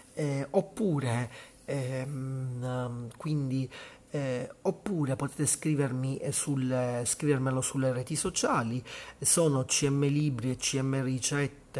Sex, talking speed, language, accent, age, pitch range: male, 100 wpm, Italian, native, 40-59, 125-145 Hz